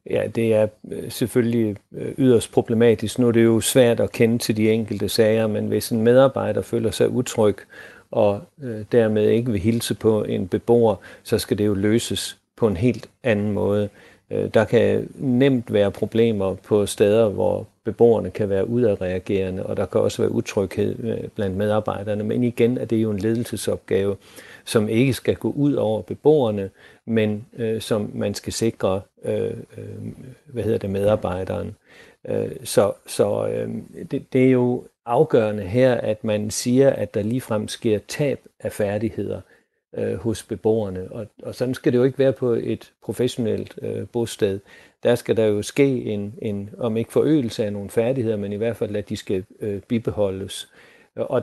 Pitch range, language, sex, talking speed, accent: 105-120 Hz, Danish, male, 160 wpm, native